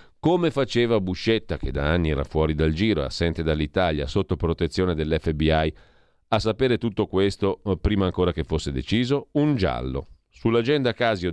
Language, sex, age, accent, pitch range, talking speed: Italian, male, 40-59, native, 85-110 Hz, 150 wpm